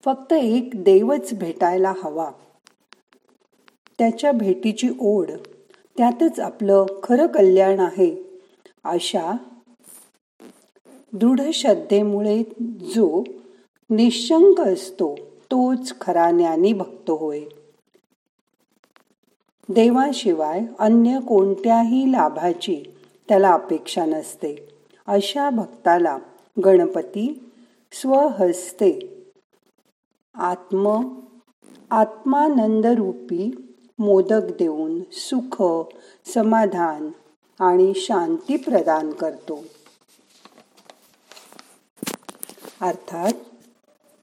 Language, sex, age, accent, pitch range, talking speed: Marathi, female, 50-69, native, 190-265 Hz, 65 wpm